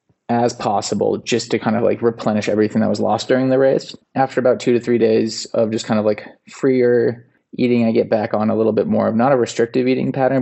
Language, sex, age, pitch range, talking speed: English, male, 20-39, 110-120 Hz, 240 wpm